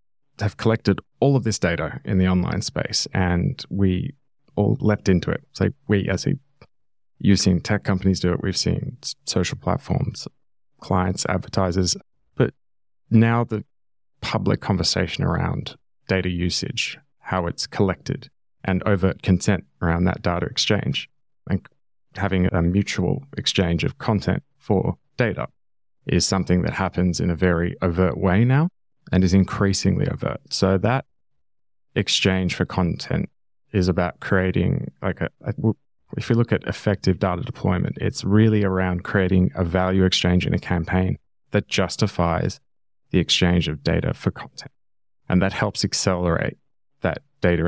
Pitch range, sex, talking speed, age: 90-105 Hz, male, 145 wpm, 20-39